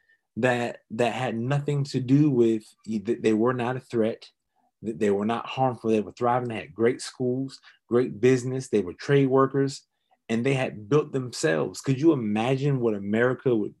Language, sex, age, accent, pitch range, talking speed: English, male, 30-49, American, 110-135 Hz, 180 wpm